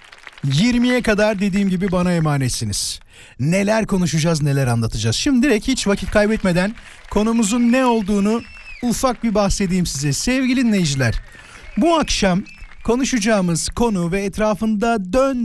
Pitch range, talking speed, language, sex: 175-225 Hz, 120 wpm, Turkish, male